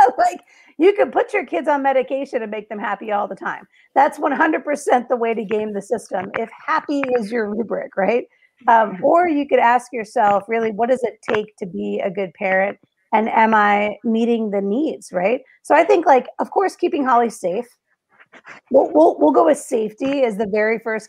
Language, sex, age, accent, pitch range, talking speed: English, female, 40-59, American, 210-270 Hz, 200 wpm